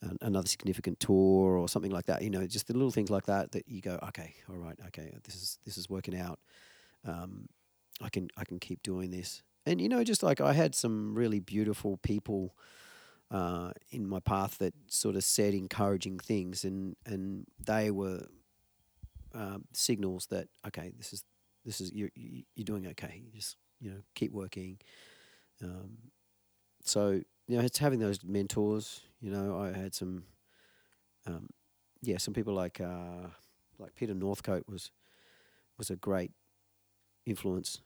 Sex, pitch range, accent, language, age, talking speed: male, 95-105 Hz, Australian, English, 40-59, 165 wpm